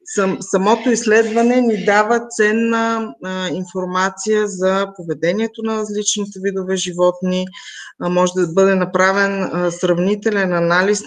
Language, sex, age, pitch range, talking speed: Bulgarian, female, 20-39, 170-205 Hz, 100 wpm